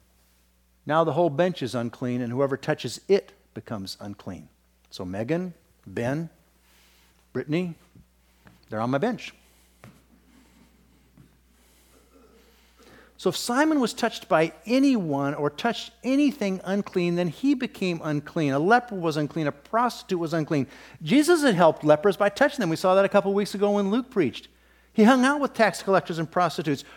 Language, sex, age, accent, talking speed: English, male, 50-69, American, 155 wpm